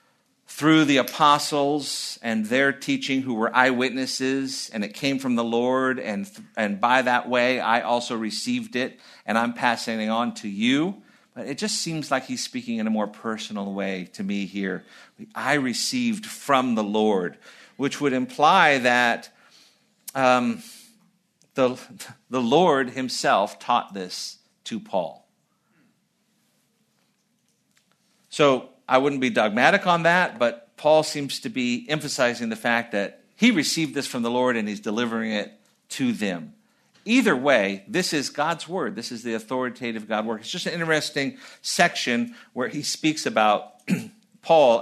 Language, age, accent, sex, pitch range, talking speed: English, 50-69, American, male, 115-195 Hz, 155 wpm